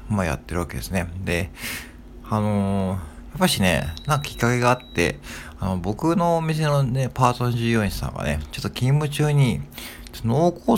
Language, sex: Japanese, male